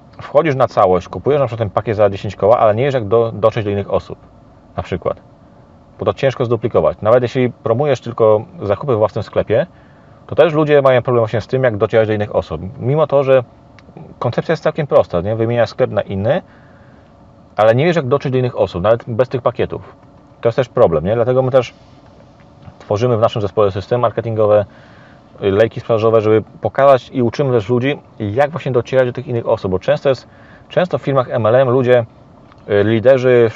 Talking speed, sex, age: 195 wpm, male, 30-49